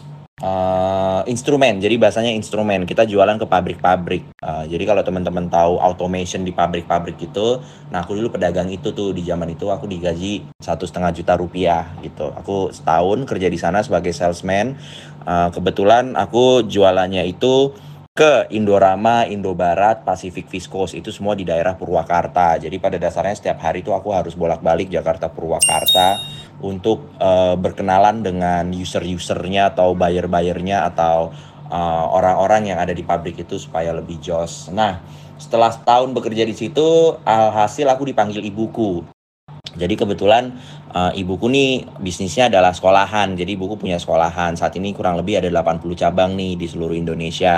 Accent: native